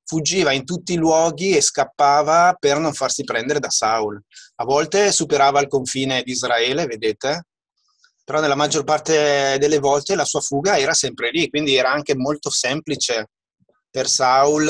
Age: 30-49